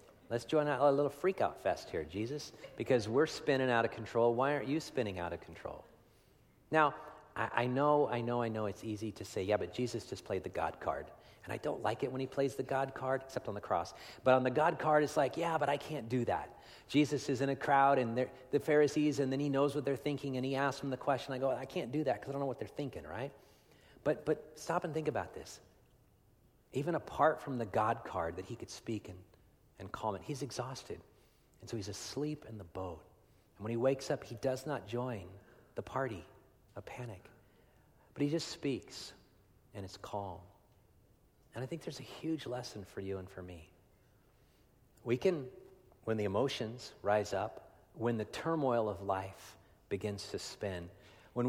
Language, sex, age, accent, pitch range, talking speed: English, male, 50-69, American, 105-140 Hz, 210 wpm